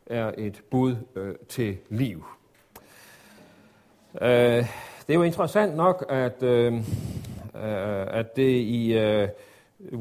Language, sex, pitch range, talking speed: Danish, male, 110-150 Hz, 115 wpm